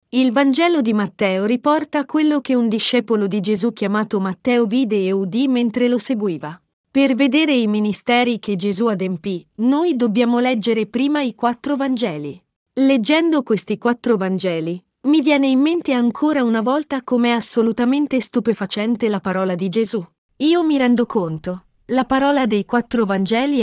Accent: native